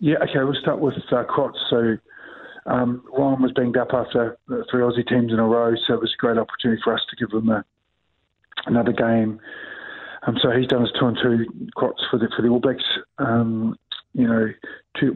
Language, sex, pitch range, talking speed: English, male, 105-125 Hz, 205 wpm